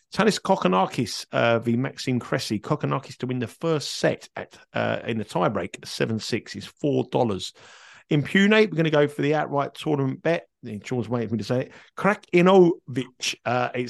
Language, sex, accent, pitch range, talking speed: English, male, British, 115-145 Hz, 175 wpm